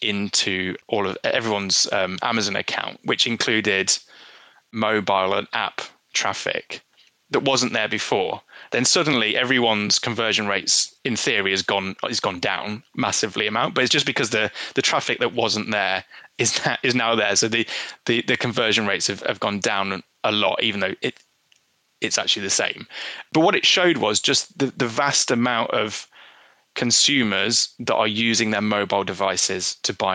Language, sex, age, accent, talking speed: English, male, 20-39, British, 170 wpm